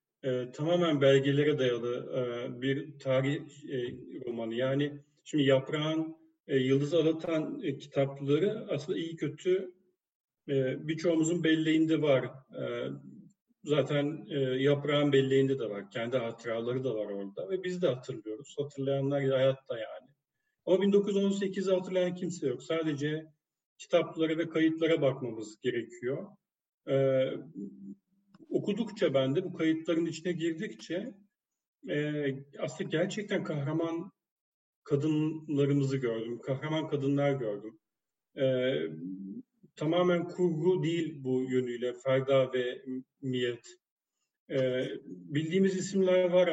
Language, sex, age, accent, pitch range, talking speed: Turkish, male, 40-59, native, 130-165 Hz, 110 wpm